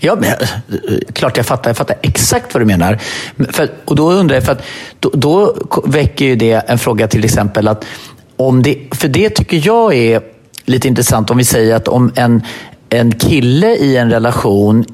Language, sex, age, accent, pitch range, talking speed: Swedish, male, 40-59, native, 100-125 Hz, 180 wpm